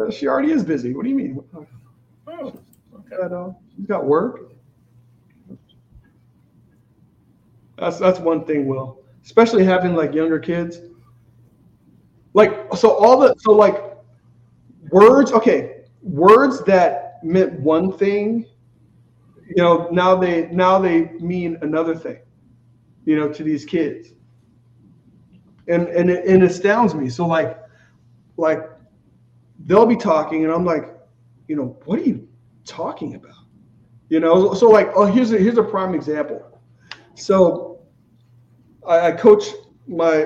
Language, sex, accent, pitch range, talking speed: English, male, American, 130-195 Hz, 130 wpm